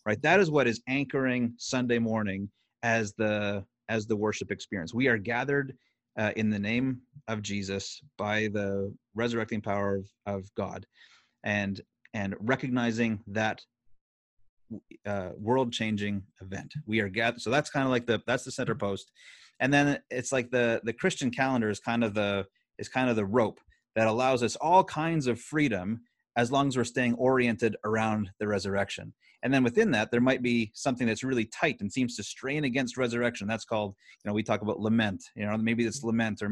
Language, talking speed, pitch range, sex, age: English, 185 wpm, 105-130 Hz, male, 30-49